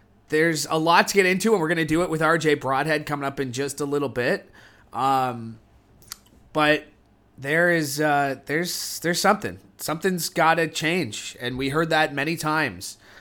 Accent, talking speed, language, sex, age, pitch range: American, 175 wpm, English, male, 30-49, 130-175 Hz